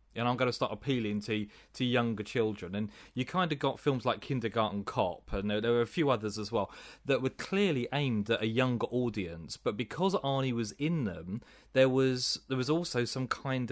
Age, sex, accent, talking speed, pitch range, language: 30-49, male, British, 210 wpm, 105-135 Hz, English